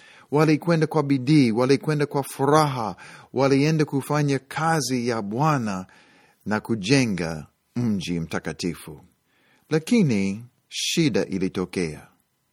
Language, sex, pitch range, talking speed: Swahili, male, 105-155 Hz, 85 wpm